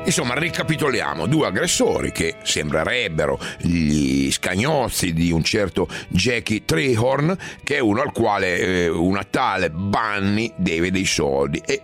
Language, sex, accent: Italian, male, native